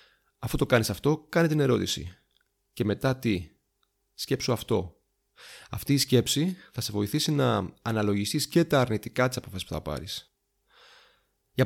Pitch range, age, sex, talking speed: 105-135 Hz, 30-49, male, 145 wpm